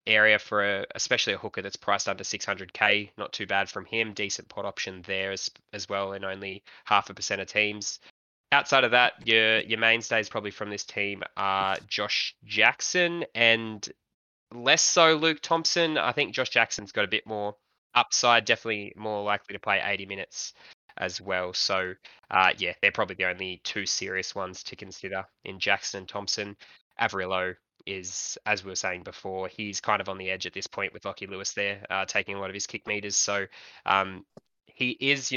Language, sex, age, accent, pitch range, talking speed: English, male, 20-39, Australian, 95-115 Hz, 195 wpm